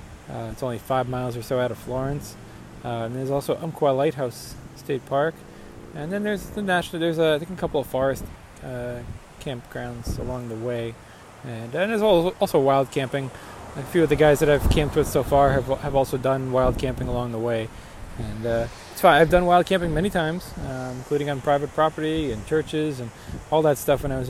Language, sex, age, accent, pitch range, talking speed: English, male, 20-39, American, 120-155 Hz, 205 wpm